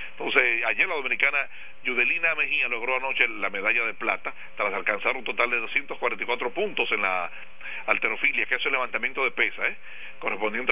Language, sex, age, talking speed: Spanish, male, 40-59, 170 wpm